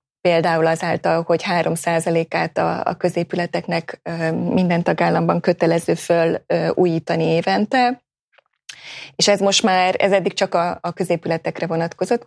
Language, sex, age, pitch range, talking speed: Hungarian, female, 20-39, 165-195 Hz, 115 wpm